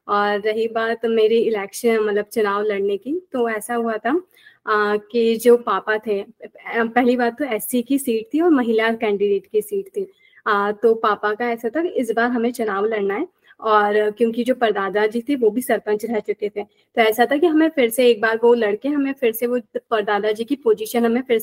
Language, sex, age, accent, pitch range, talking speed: Hindi, female, 30-49, native, 220-270 Hz, 220 wpm